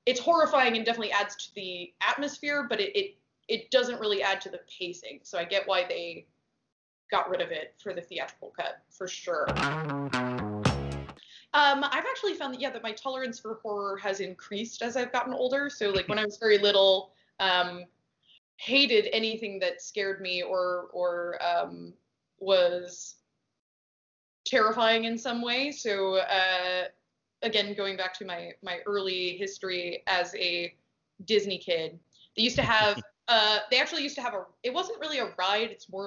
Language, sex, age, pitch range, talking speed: English, female, 20-39, 185-245 Hz, 170 wpm